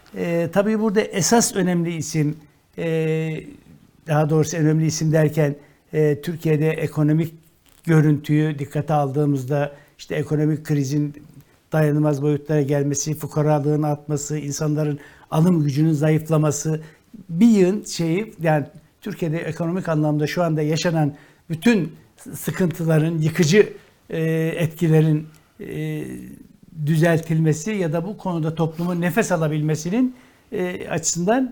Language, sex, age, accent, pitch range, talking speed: Turkish, male, 60-79, native, 150-175 Hz, 105 wpm